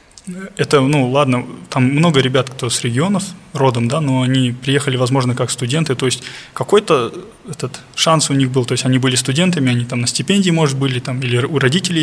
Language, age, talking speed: Russian, 20-39, 195 wpm